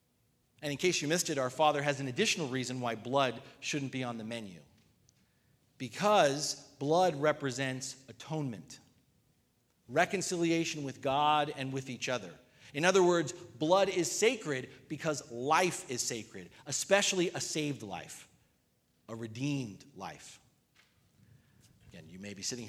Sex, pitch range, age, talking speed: male, 130-180 Hz, 40-59, 140 wpm